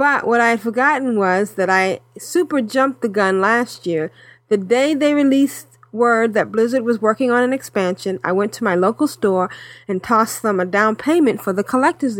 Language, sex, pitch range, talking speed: English, female, 195-265 Hz, 200 wpm